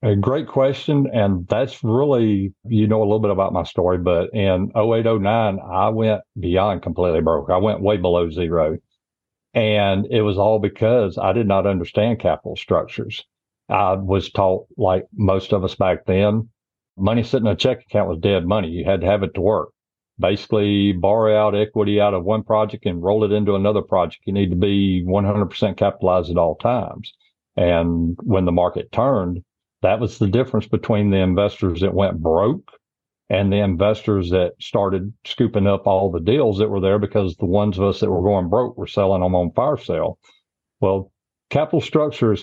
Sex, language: male, English